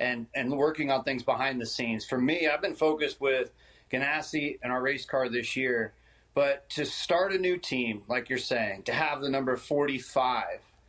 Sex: male